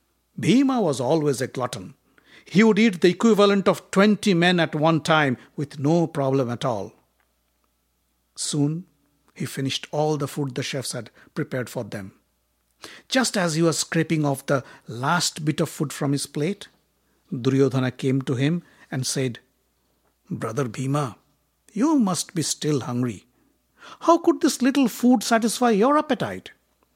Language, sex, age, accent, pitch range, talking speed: English, male, 60-79, Indian, 130-170 Hz, 150 wpm